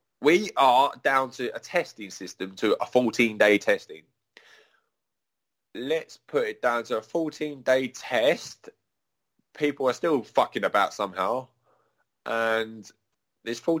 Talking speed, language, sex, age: 115 wpm, English, male, 20-39